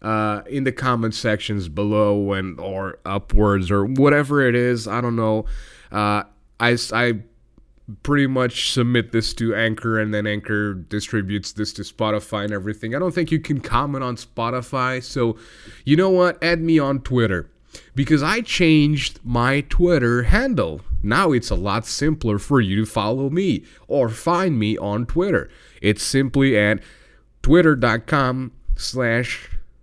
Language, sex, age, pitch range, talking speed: English, male, 30-49, 105-135 Hz, 155 wpm